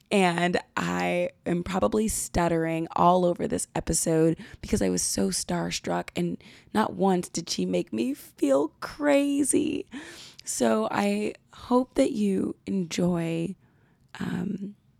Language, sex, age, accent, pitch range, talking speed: English, female, 20-39, American, 170-235 Hz, 120 wpm